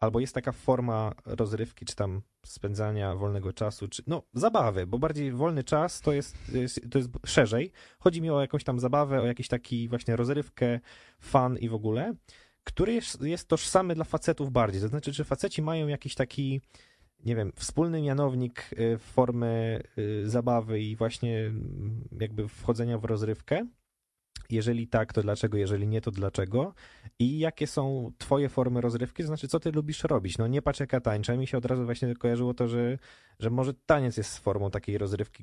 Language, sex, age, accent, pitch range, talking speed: Polish, male, 20-39, native, 110-140 Hz, 175 wpm